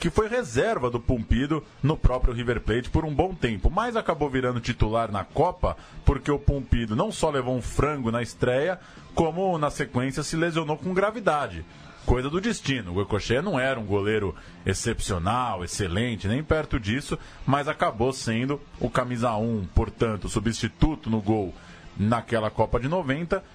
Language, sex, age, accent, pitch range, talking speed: Portuguese, male, 20-39, Brazilian, 105-145 Hz, 165 wpm